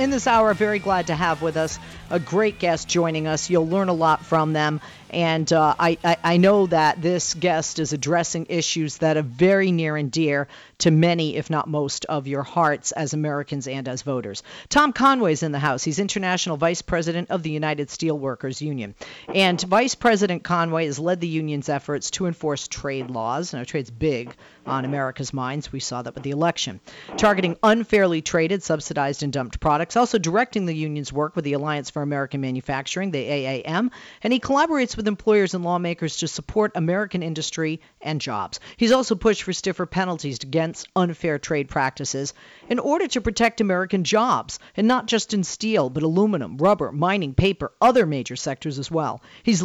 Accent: American